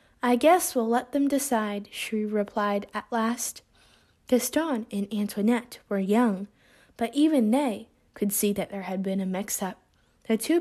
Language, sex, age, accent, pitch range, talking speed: English, female, 20-39, American, 205-260 Hz, 160 wpm